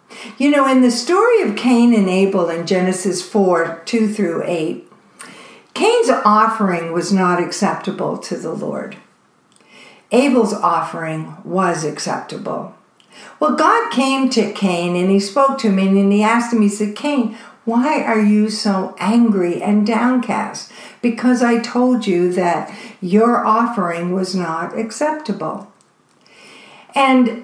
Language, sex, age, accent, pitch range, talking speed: English, female, 60-79, American, 190-240 Hz, 135 wpm